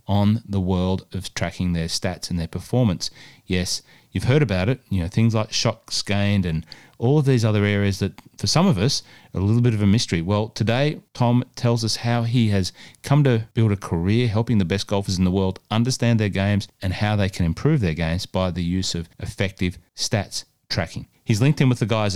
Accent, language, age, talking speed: Australian, English, 30-49, 220 wpm